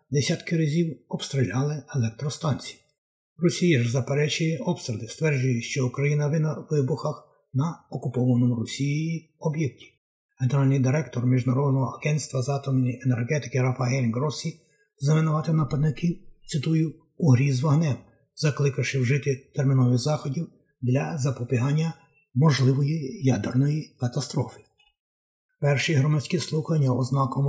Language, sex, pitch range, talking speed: Ukrainian, male, 130-155 Hz, 100 wpm